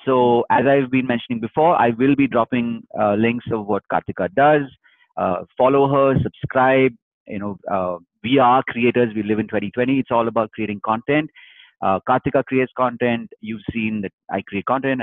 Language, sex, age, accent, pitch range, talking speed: English, male, 30-49, Indian, 110-140 Hz, 180 wpm